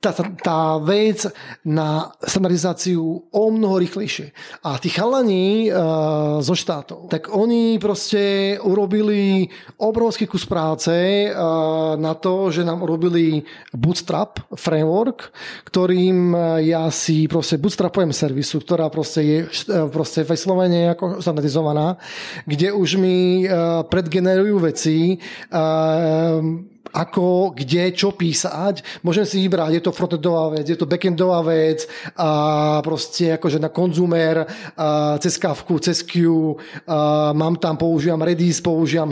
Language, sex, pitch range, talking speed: Czech, male, 160-195 Hz, 120 wpm